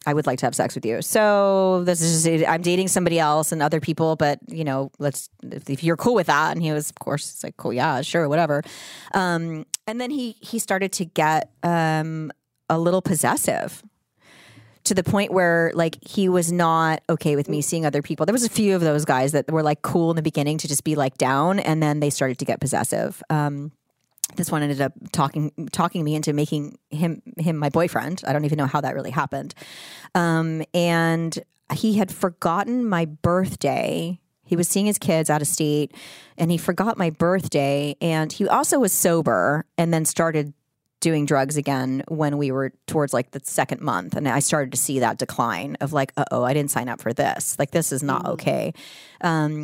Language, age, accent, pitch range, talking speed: English, 30-49, American, 145-175 Hz, 210 wpm